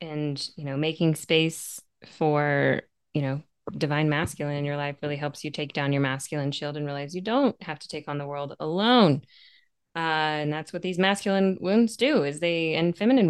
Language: English